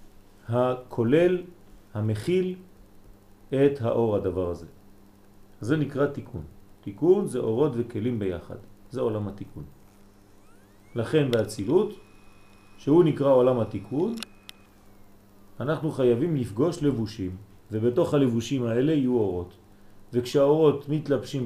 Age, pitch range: 40-59, 100-140 Hz